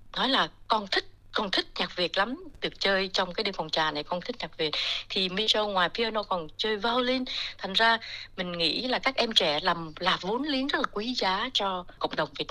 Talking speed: 230 wpm